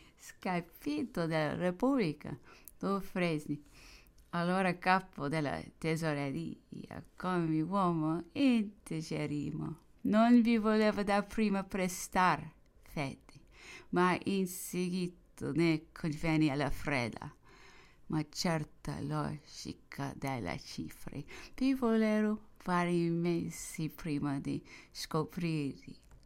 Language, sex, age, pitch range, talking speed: English, female, 30-49, 150-195 Hz, 85 wpm